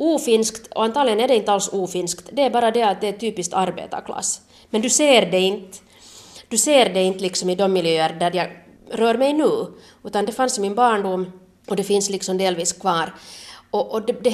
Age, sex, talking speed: 30-49, female, 215 wpm